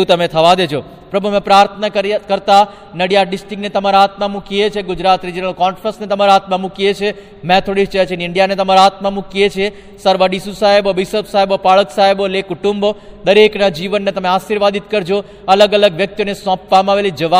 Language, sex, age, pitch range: Gujarati, male, 40-59, 190-205 Hz